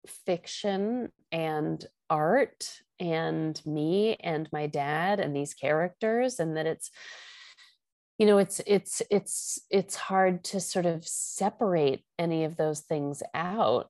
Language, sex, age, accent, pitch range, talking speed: English, female, 30-49, American, 165-205 Hz, 130 wpm